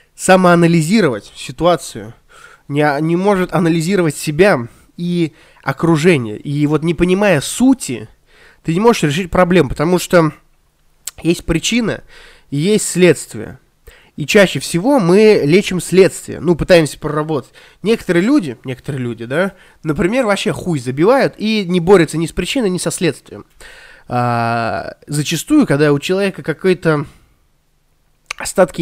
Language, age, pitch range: Russian, 20-39, 145-195 Hz